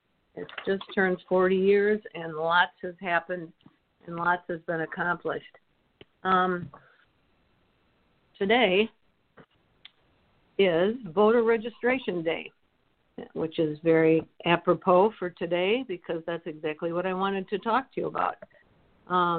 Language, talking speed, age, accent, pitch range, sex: English, 120 wpm, 50-69, American, 170-210 Hz, female